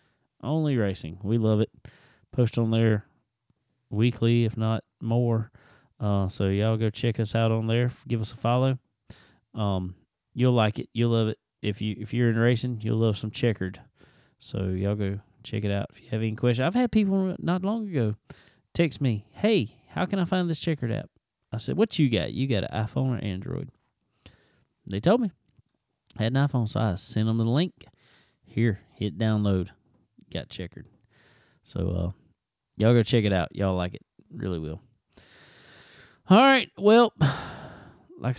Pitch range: 110-135 Hz